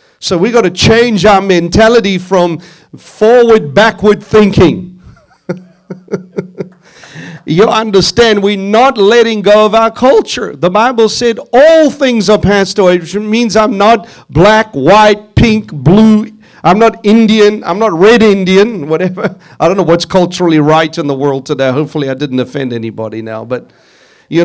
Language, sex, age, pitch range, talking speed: English, male, 50-69, 170-220 Hz, 150 wpm